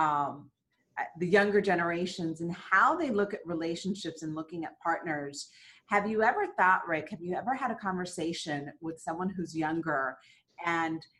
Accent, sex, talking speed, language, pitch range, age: American, female, 160 wpm, English, 165-210 Hz, 30-49